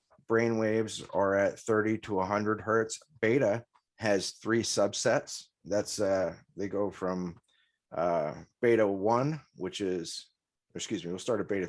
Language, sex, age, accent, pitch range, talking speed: English, male, 30-49, American, 100-115 Hz, 145 wpm